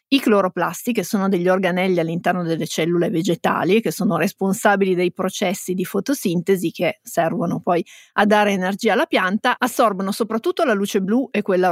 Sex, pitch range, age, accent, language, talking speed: female, 190-230 Hz, 30-49, native, Italian, 165 wpm